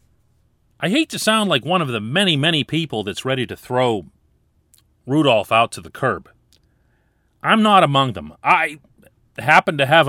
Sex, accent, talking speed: male, American, 165 wpm